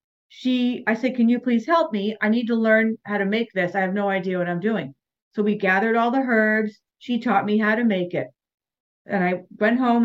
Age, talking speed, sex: 40-59, 240 wpm, female